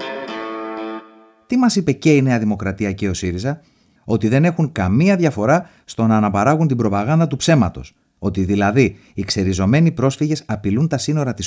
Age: 30-49